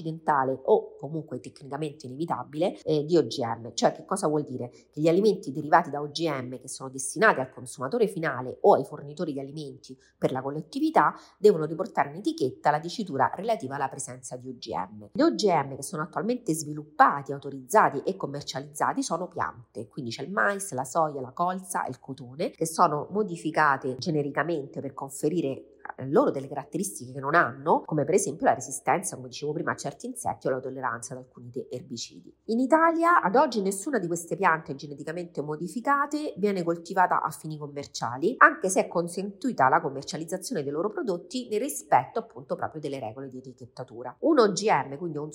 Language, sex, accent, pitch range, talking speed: Italian, female, native, 135-180 Hz, 170 wpm